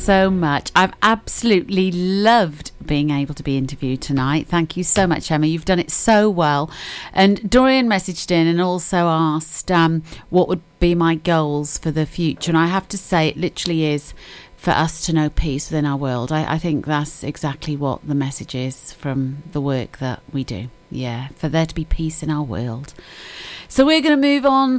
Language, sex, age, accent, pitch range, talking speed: English, female, 40-59, British, 155-200 Hz, 200 wpm